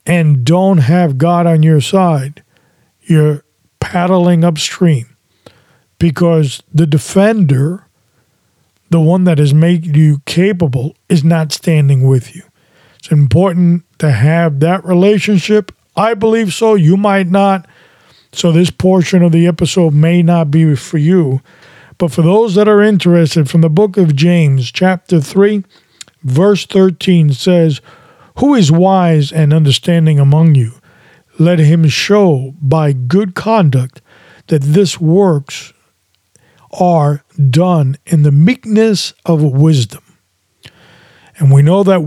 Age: 40-59